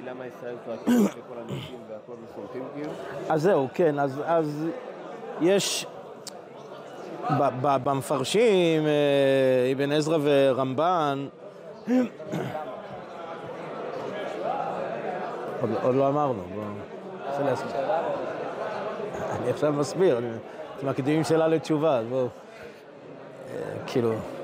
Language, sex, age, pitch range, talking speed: Hebrew, male, 30-49, 145-205 Hz, 75 wpm